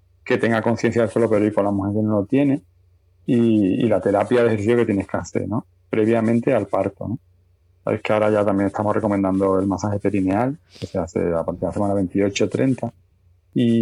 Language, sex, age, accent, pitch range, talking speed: Spanish, male, 30-49, Spanish, 100-120 Hz, 210 wpm